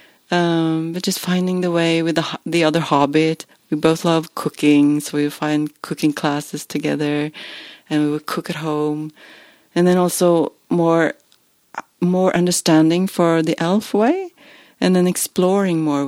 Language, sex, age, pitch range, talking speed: English, female, 30-49, 155-220 Hz, 155 wpm